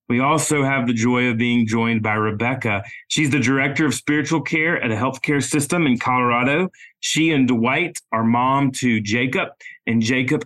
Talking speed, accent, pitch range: 180 wpm, American, 120-150 Hz